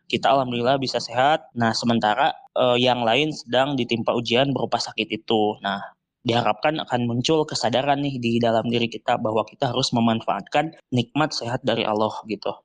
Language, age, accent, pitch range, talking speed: Indonesian, 20-39, native, 115-135 Hz, 160 wpm